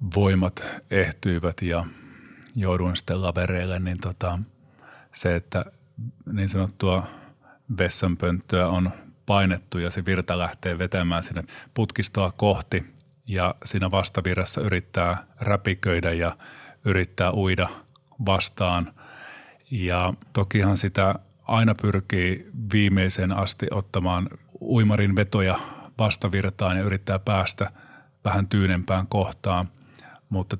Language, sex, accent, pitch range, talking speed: Finnish, male, native, 90-105 Hz, 95 wpm